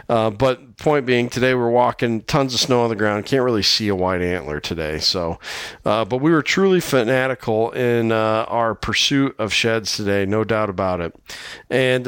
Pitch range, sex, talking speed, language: 100-125 Hz, male, 195 wpm, English